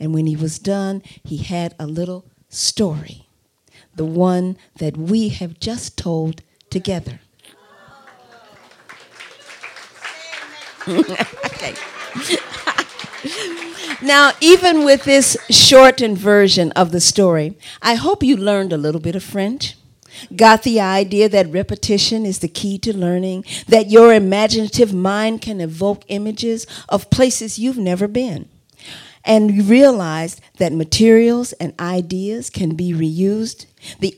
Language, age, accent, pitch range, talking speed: English, 50-69, American, 170-220 Hz, 120 wpm